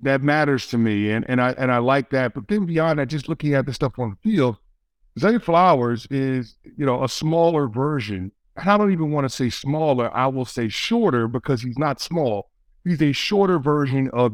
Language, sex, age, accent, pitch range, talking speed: English, male, 50-69, American, 125-150 Hz, 220 wpm